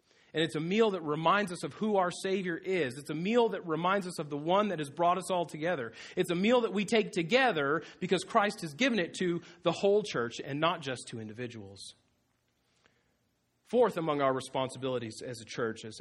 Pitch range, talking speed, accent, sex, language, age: 135-175 Hz, 210 wpm, American, male, English, 40-59